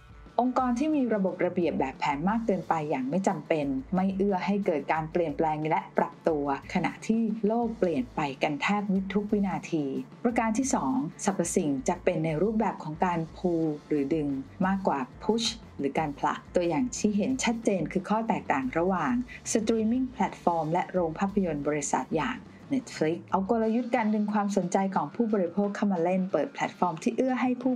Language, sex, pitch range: Thai, female, 165-220 Hz